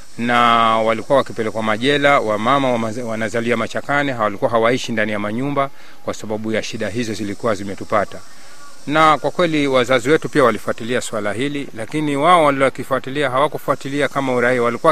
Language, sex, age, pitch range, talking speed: Swahili, male, 40-59, 115-140 Hz, 145 wpm